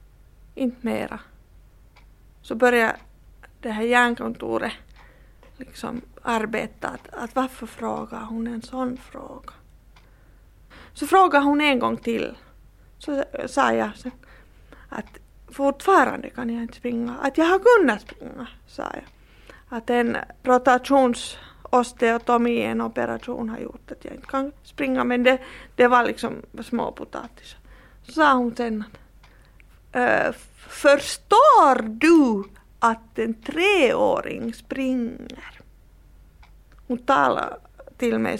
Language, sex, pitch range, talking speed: Swedish, female, 230-275 Hz, 115 wpm